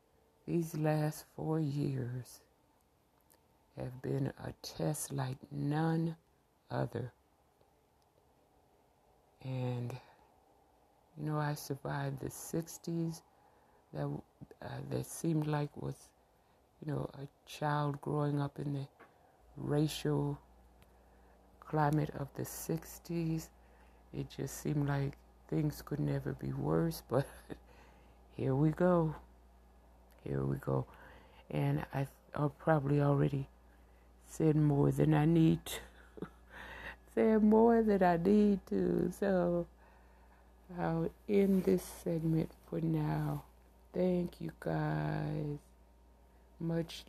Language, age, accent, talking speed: English, 60-79, American, 100 wpm